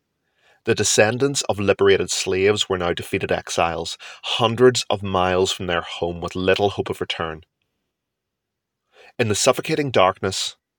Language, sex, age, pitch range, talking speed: English, male, 30-49, 95-110 Hz, 135 wpm